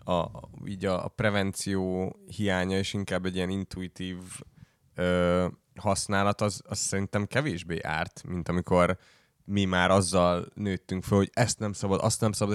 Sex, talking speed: male, 155 wpm